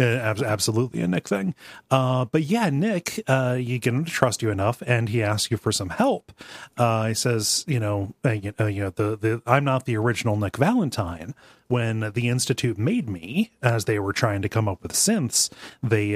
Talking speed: 195 wpm